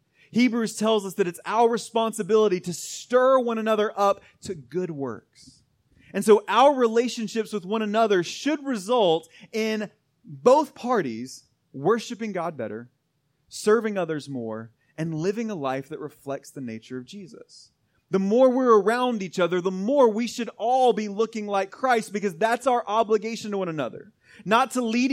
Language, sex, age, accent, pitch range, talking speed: English, male, 30-49, American, 175-240 Hz, 160 wpm